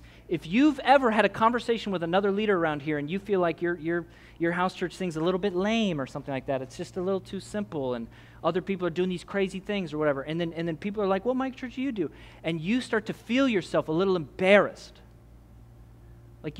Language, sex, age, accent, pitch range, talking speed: English, male, 30-49, American, 140-230 Hz, 250 wpm